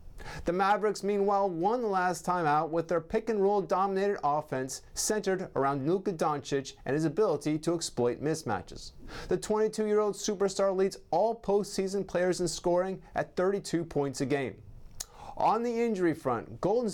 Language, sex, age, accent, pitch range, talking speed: English, male, 30-49, American, 150-200 Hz, 150 wpm